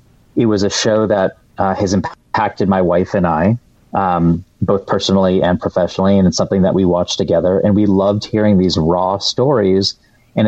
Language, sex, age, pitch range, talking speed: English, male, 30-49, 95-110 Hz, 185 wpm